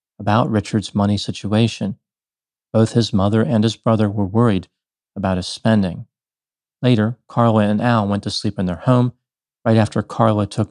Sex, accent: male, American